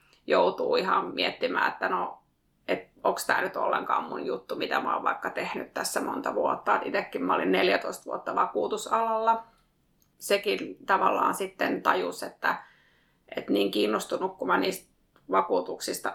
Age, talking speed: 30-49, 140 wpm